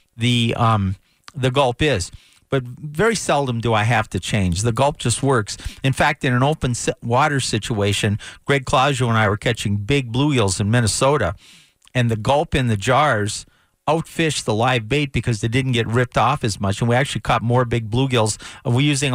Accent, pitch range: American, 110-145 Hz